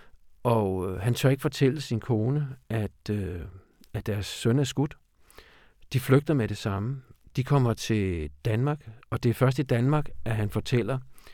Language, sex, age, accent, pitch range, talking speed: Danish, male, 50-69, native, 105-130 Hz, 170 wpm